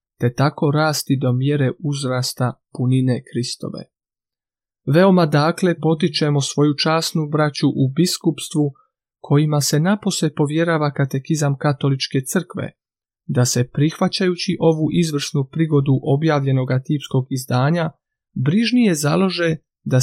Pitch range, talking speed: 135-165 Hz, 105 wpm